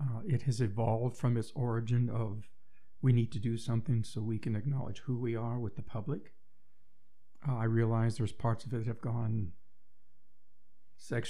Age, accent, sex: 50-69, American, male